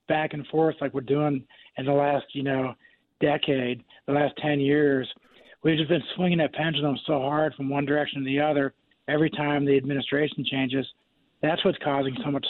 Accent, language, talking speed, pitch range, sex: American, English, 190 wpm, 135-155 Hz, male